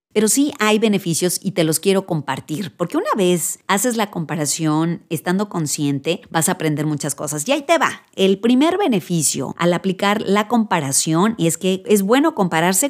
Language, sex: Spanish, female